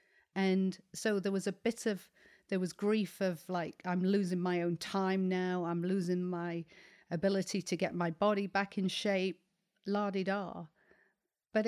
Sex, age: female, 40-59